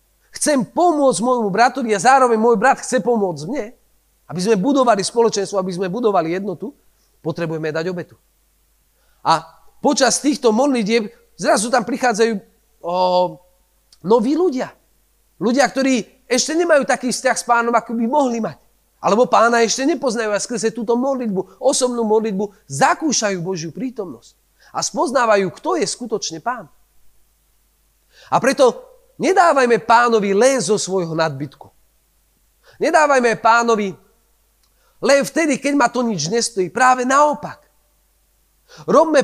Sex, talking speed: male, 130 wpm